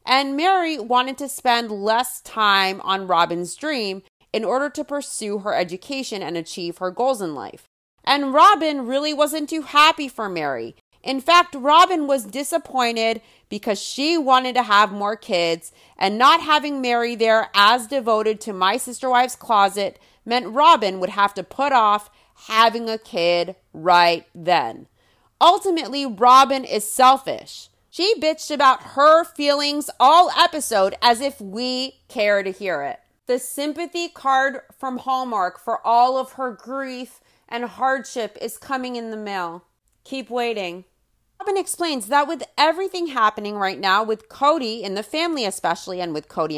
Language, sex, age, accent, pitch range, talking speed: English, female, 30-49, American, 210-295 Hz, 155 wpm